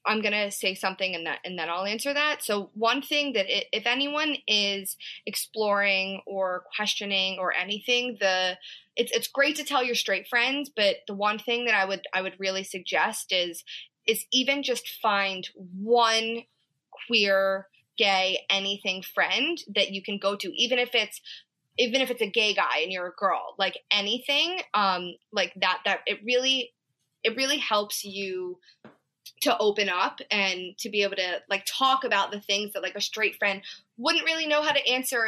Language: English